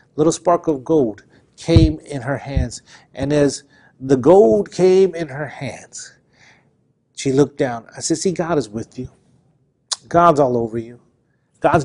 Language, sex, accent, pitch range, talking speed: English, male, American, 130-160 Hz, 155 wpm